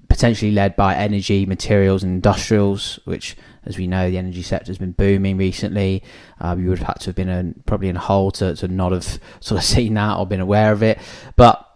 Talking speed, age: 230 wpm, 20-39